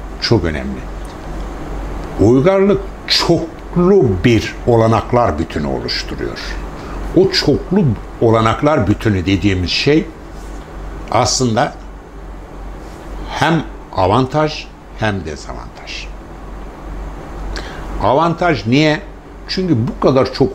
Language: Turkish